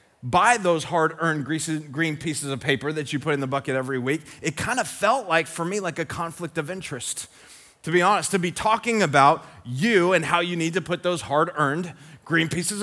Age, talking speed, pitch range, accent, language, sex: 30-49, 210 wpm, 160-210 Hz, American, English, male